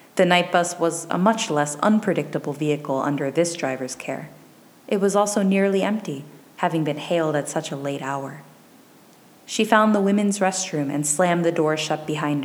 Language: English